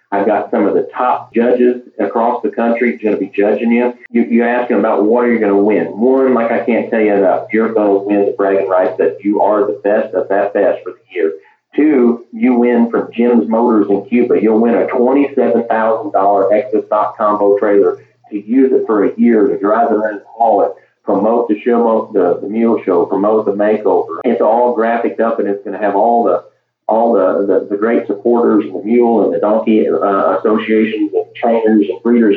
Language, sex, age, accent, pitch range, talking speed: English, male, 40-59, American, 100-125 Hz, 215 wpm